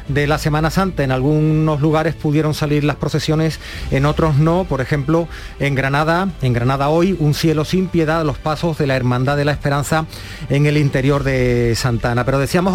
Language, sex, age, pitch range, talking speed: Spanish, male, 40-59, 135-170 Hz, 195 wpm